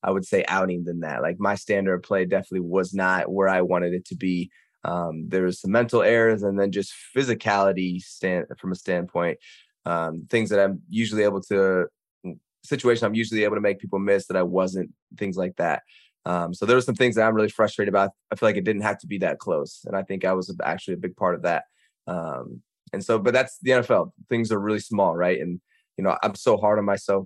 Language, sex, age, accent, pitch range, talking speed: English, male, 20-39, American, 90-105 Hz, 235 wpm